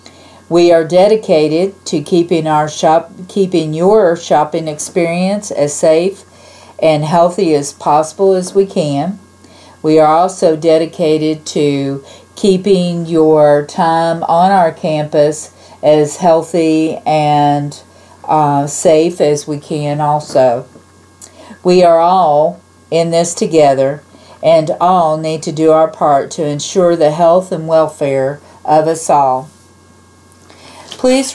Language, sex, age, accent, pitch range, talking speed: English, female, 50-69, American, 145-175 Hz, 120 wpm